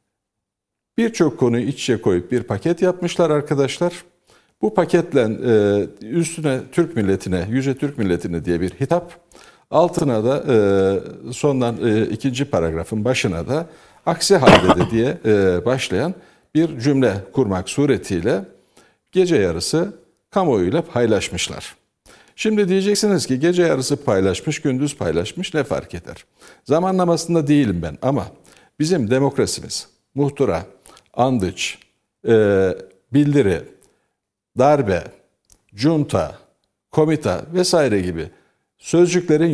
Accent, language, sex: native, Turkish, male